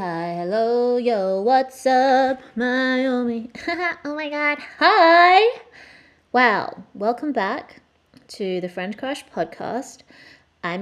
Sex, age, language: female, 20-39, English